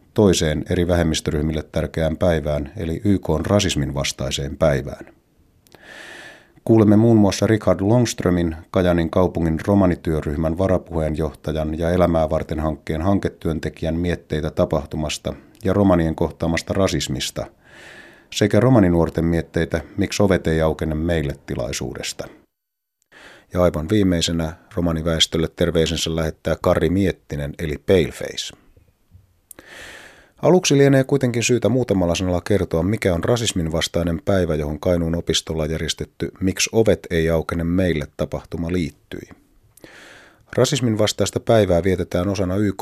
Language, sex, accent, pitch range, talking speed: Finnish, male, native, 80-95 Hz, 110 wpm